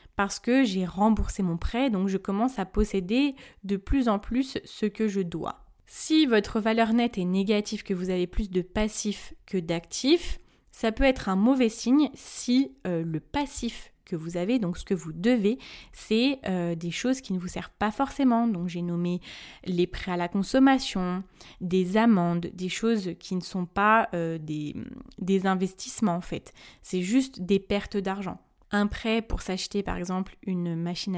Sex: female